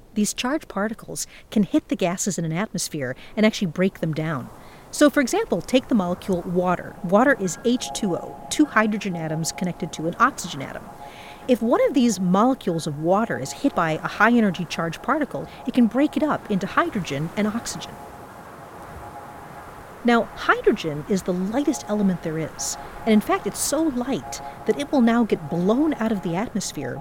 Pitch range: 170-235 Hz